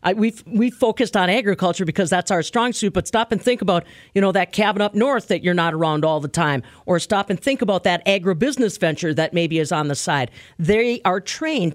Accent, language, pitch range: American, English, 180-225 Hz